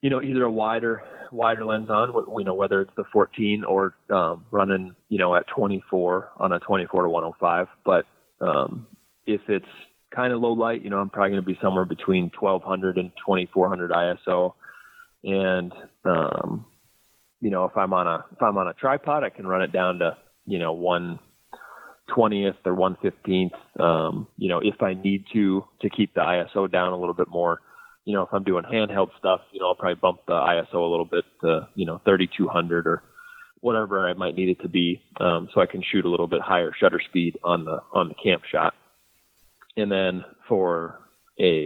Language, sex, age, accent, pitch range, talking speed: English, male, 30-49, American, 90-110 Hz, 200 wpm